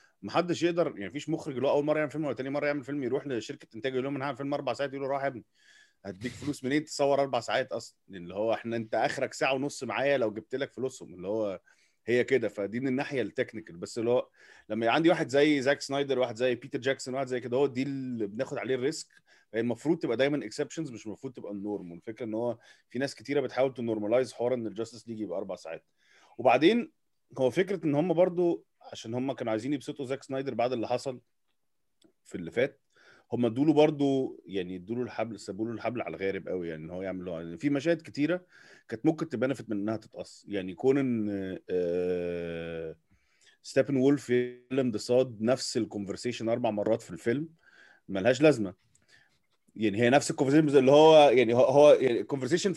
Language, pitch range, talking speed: Arabic, 110-145 Hz, 195 wpm